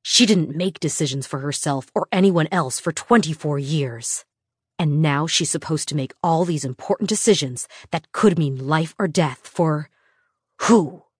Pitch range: 130-190 Hz